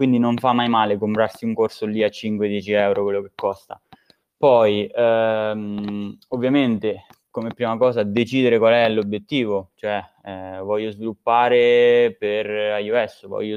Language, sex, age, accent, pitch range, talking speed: Italian, male, 20-39, native, 105-130 Hz, 140 wpm